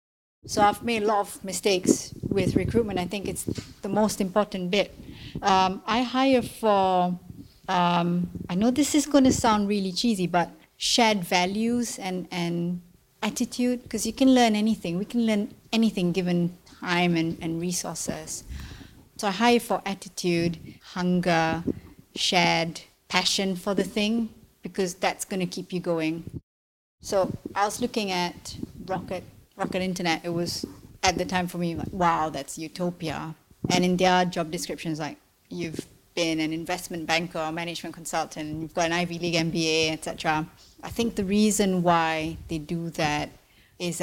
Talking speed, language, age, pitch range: 160 wpm, English, 30-49, 170-205 Hz